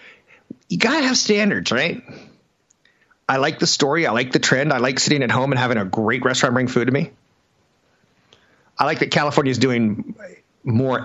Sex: male